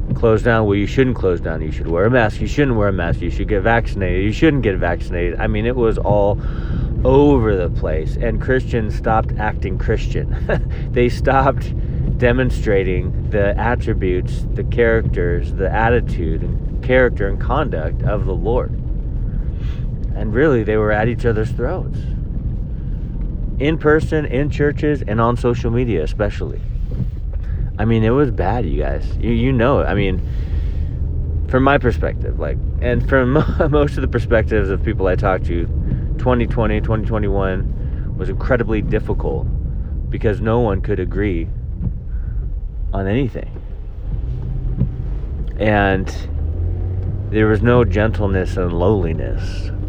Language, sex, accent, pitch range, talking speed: English, male, American, 90-120 Hz, 140 wpm